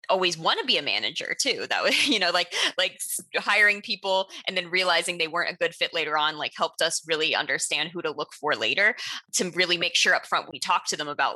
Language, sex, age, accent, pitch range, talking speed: English, female, 20-39, American, 170-205 Hz, 245 wpm